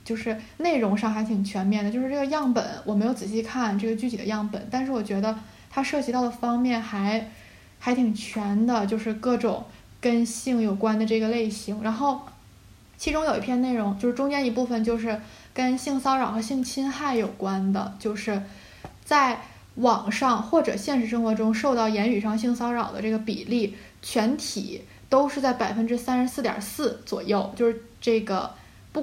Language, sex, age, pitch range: Chinese, female, 10-29, 215-250 Hz